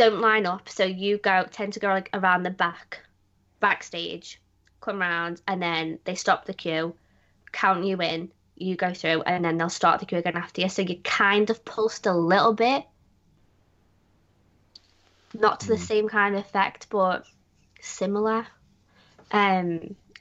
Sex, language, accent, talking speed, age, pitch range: female, English, British, 165 wpm, 20-39, 170-195 Hz